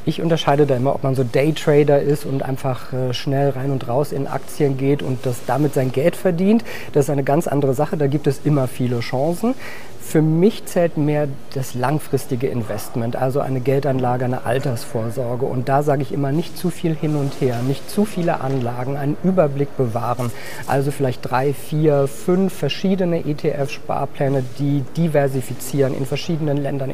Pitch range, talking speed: 130-150 Hz, 175 wpm